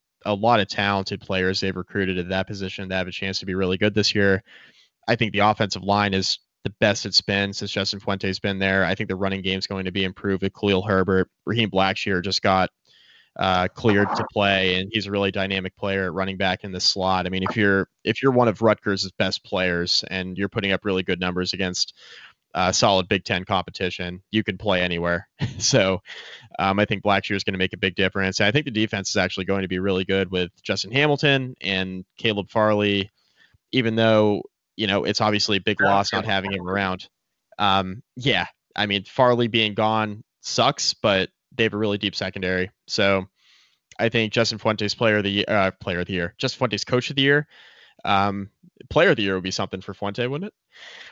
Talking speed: 220 wpm